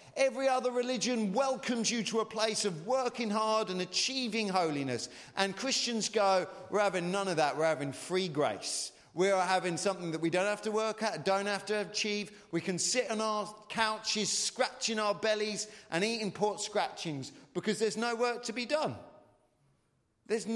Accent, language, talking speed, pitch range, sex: British, English, 180 wpm, 185-235 Hz, male